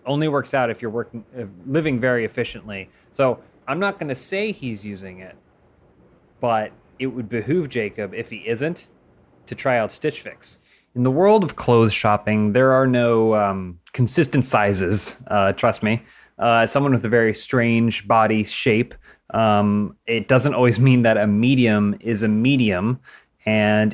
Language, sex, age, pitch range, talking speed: English, male, 30-49, 105-130 Hz, 170 wpm